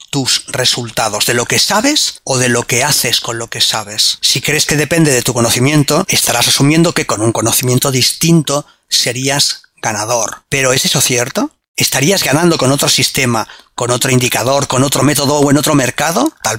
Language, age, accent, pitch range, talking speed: Spanish, 30-49, Spanish, 125-160 Hz, 185 wpm